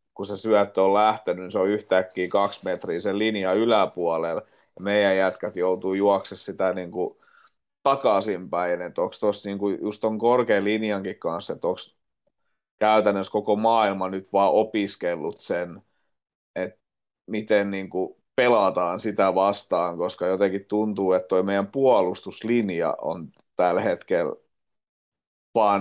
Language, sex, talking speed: Finnish, male, 130 wpm